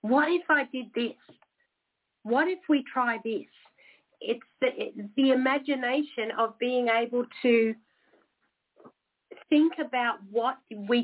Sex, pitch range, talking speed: female, 210-270 Hz, 125 wpm